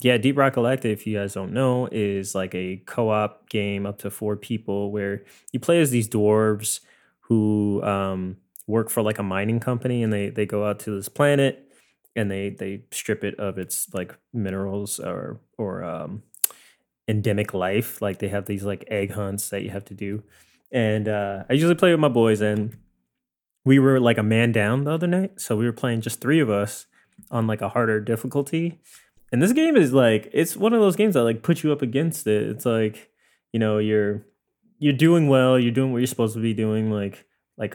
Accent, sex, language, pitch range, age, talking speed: American, male, English, 100-130 Hz, 20-39, 210 wpm